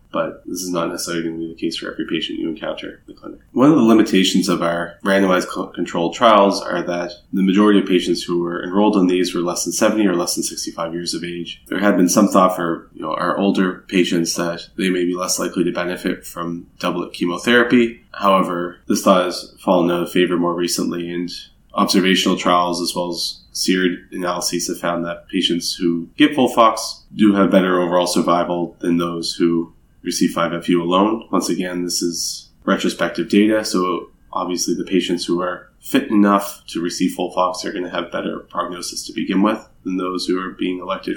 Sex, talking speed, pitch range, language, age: male, 205 wpm, 85-95 Hz, English, 20-39